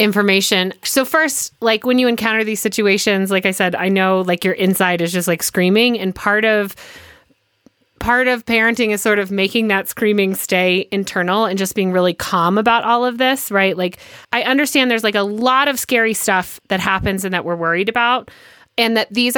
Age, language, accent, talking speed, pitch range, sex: 30-49, English, American, 200 wpm, 195-250 Hz, female